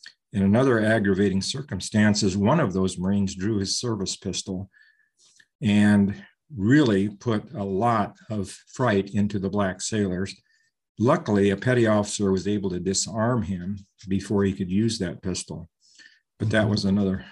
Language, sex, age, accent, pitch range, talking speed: English, male, 50-69, American, 100-120 Hz, 145 wpm